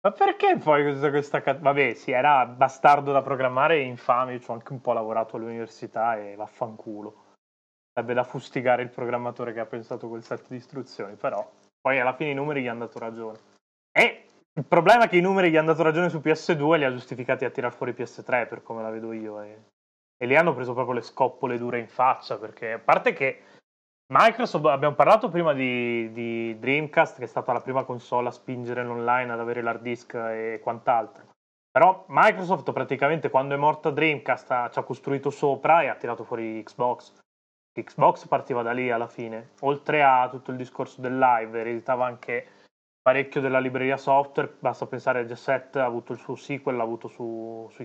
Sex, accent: male, native